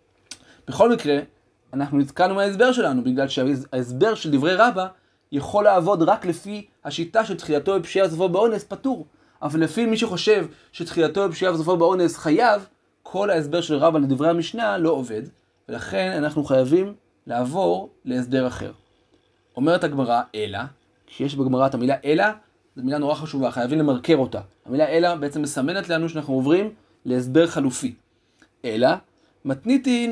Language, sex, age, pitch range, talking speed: Hebrew, male, 30-49, 145-215 Hz, 135 wpm